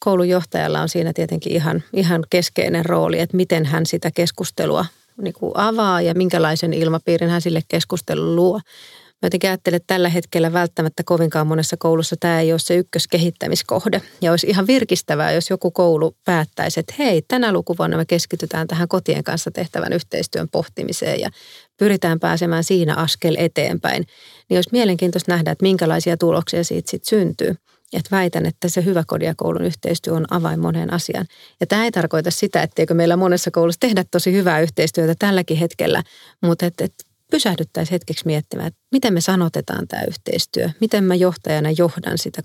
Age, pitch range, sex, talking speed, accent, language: 30-49, 165-190 Hz, female, 160 wpm, native, Finnish